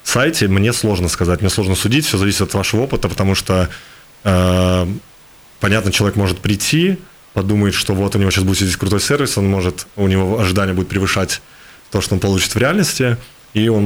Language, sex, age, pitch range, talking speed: Russian, male, 20-39, 90-105 Hz, 190 wpm